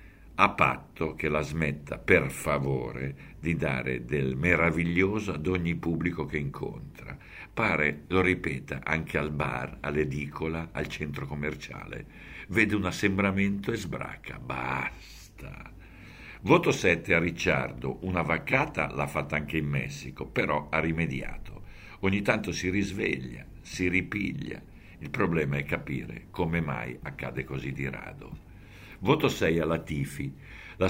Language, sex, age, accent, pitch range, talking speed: Italian, male, 60-79, native, 75-100 Hz, 130 wpm